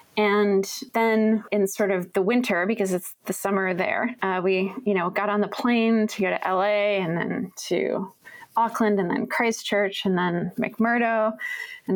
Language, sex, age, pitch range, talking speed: English, female, 20-39, 185-225 Hz, 175 wpm